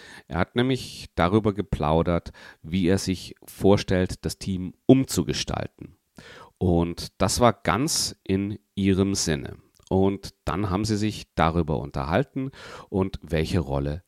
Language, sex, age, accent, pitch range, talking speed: German, male, 40-59, German, 80-100 Hz, 125 wpm